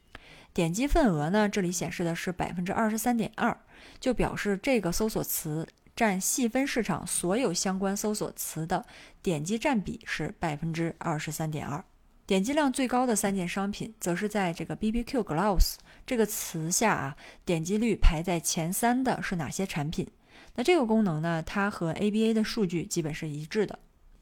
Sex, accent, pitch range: female, native, 175-225 Hz